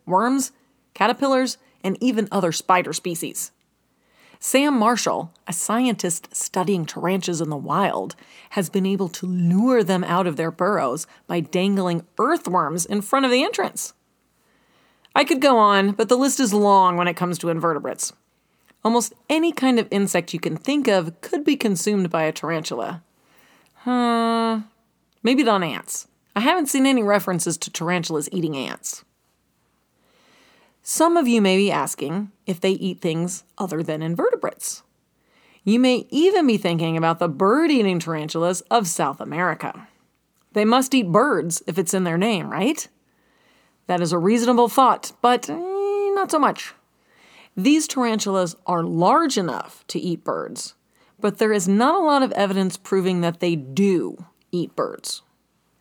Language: English